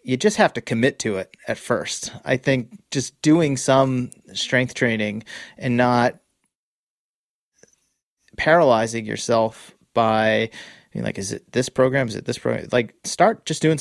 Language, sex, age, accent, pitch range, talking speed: English, male, 30-49, American, 110-130 Hz, 150 wpm